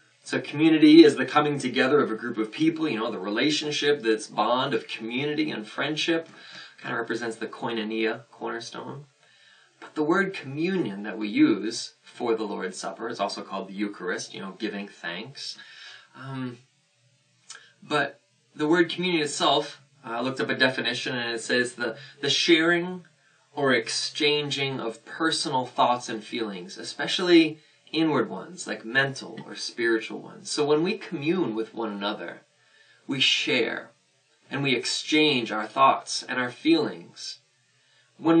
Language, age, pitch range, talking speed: English, 20-39, 115-160 Hz, 155 wpm